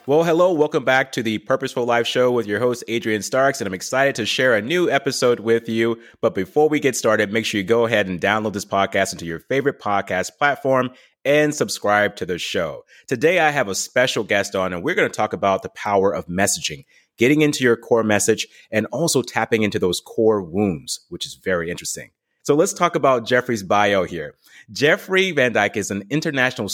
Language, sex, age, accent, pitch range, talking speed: English, male, 30-49, American, 105-140 Hz, 210 wpm